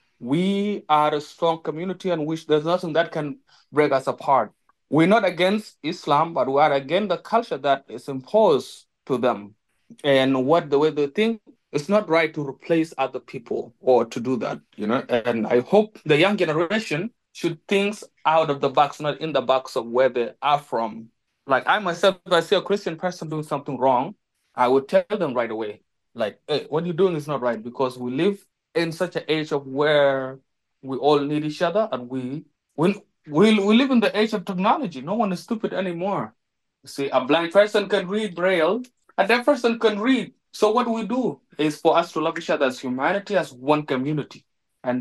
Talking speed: 205 wpm